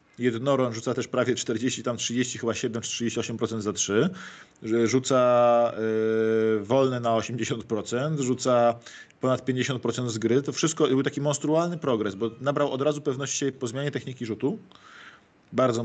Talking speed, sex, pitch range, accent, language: 140 wpm, male, 115-140 Hz, native, Polish